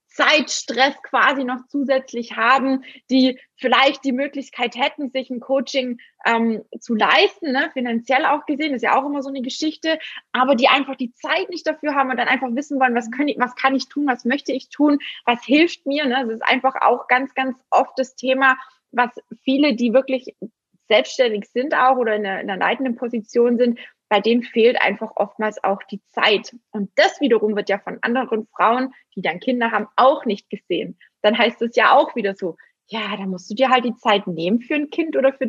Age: 20-39